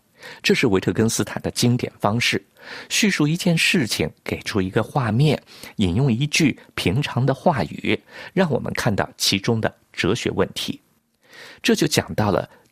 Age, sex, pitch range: 50-69, male, 110-165 Hz